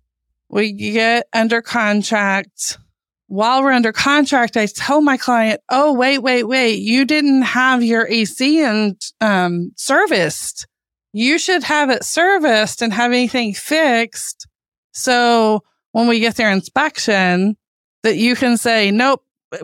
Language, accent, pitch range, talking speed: English, American, 195-255 Hz, 135 wpm